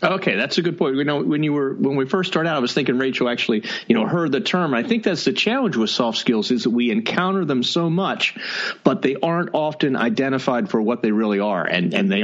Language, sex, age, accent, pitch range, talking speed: English, male, 40-59, American, 120-190 Hz, 260 wpm